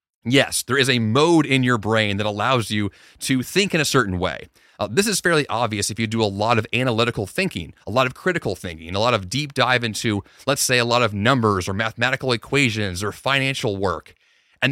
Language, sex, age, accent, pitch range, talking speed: English, male, 30-49, American, 105-155 Hz, 220 wpm